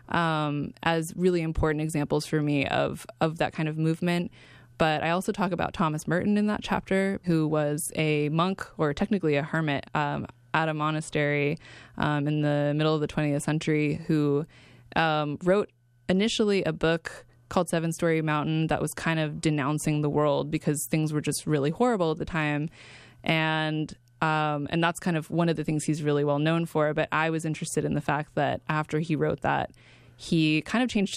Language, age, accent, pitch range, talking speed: English, 20-39, American, 145-160 Hz, 195 wpm